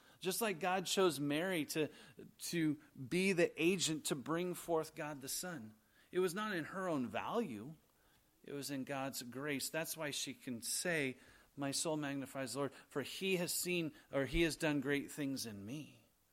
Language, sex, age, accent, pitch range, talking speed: English, male, 40-59, American, 130-165 Hz, 185 wpm